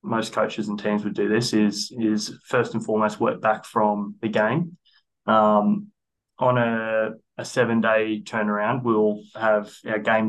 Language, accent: English, Australian